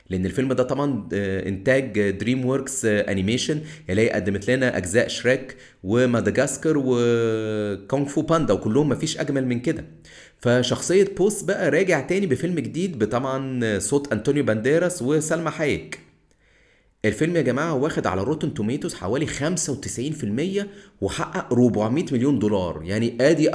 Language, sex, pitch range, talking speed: Arabic, male, 110-160 Hz, 130 wpm